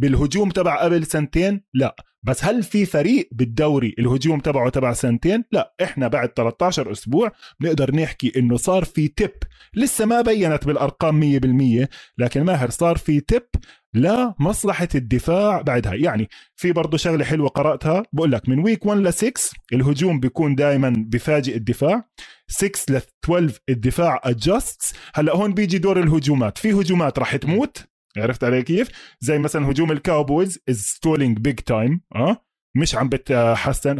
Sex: male